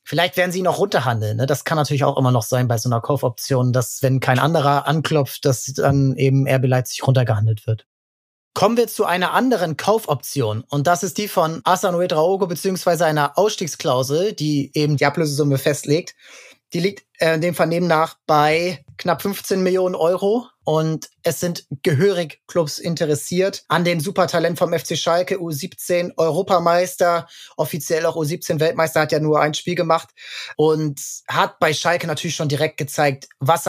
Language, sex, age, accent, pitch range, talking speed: German, male, 20-39, German, 150-180 Hz, 165 wpm